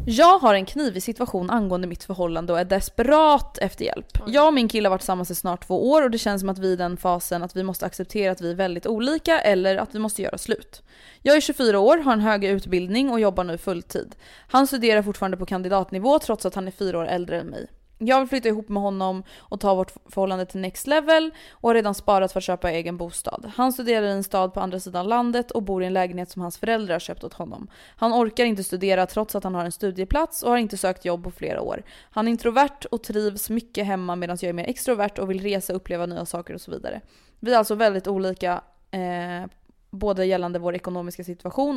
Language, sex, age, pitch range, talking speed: Swedish, female, 20-39, 180-230 Hz, 245 wpm